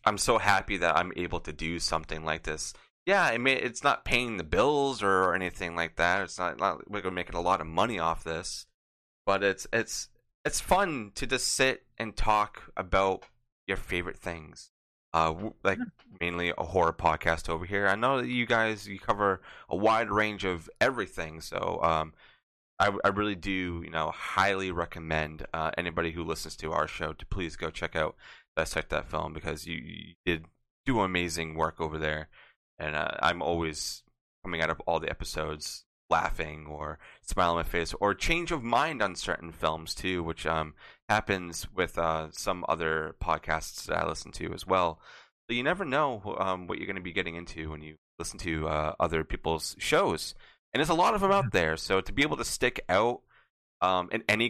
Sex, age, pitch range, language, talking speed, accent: male, 20-39, 80-95 Hz, English, 200 wpm, American